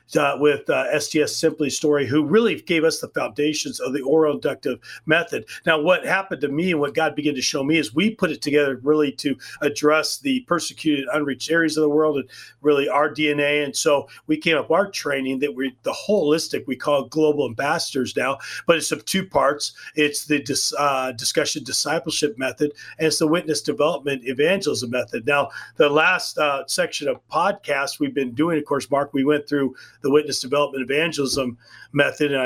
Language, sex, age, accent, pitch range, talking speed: English, male, 40-59, American, 140-160 Hz, 195 wpm